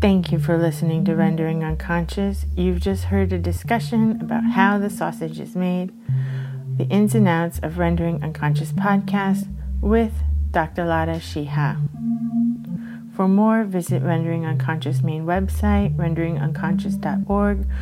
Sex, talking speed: female, 130 wpm